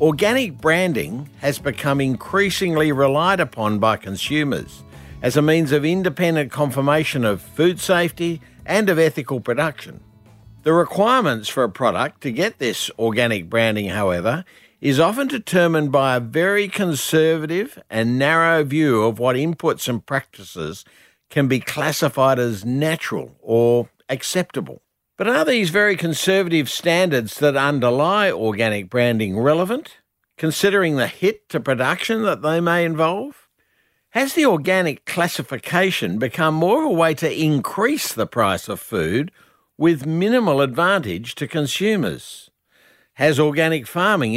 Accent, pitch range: Australian, 130-180 Hz